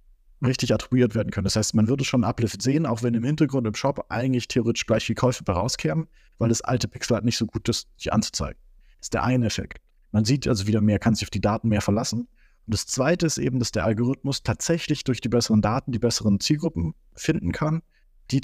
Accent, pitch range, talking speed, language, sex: German, 105-130 Hz, 230 wpm, German, male